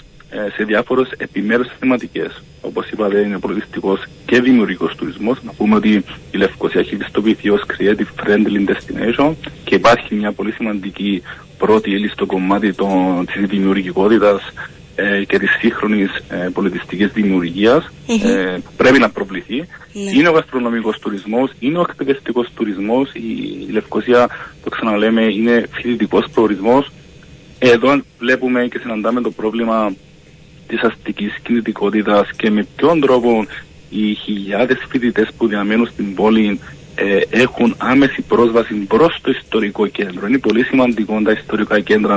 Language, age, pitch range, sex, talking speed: Greek, 40-59, 100-120 Hz, male, 130 wpm